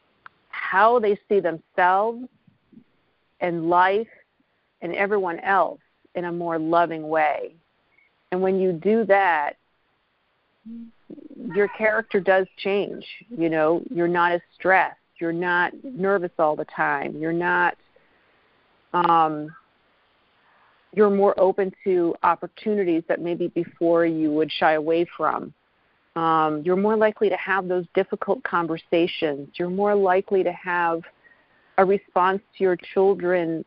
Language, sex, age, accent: English, female, 50-69, American